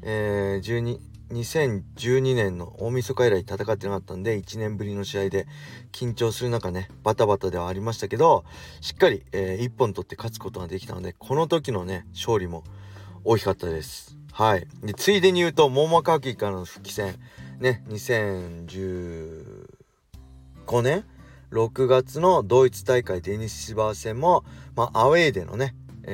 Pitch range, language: 95-120 Hz, Japanese